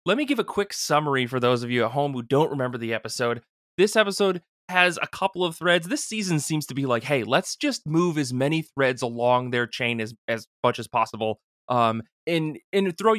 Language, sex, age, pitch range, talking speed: English, male, 20-39, 125-170 Hz, 225 wpm